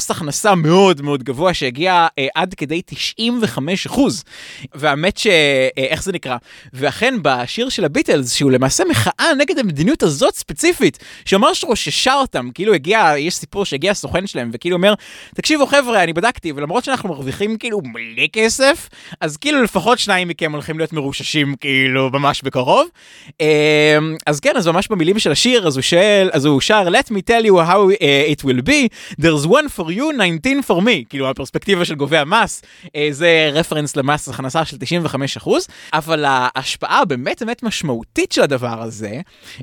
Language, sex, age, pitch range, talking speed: Hebrew, male, 20-39, 140-210 Hz, 155 wpm